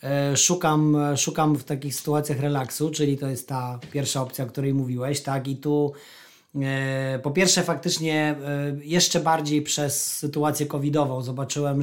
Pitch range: 135-150 Hz